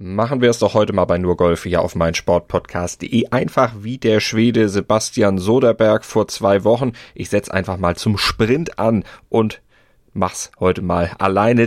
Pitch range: 95-120 Hz